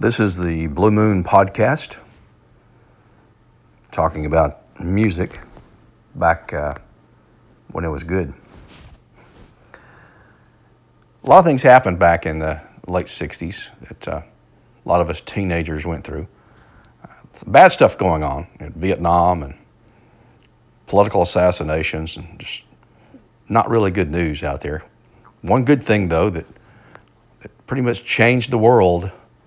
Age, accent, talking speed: 50-69, American, 130 wpm